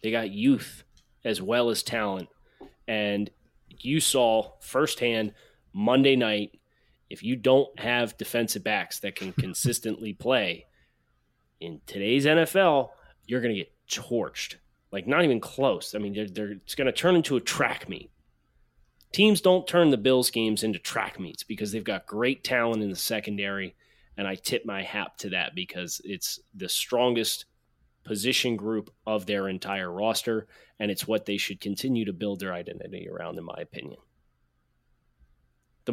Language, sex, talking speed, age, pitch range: English, male, 160 wpm, 30-49, 100-130 Hz